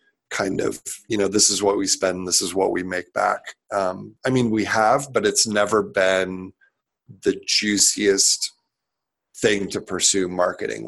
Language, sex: English, male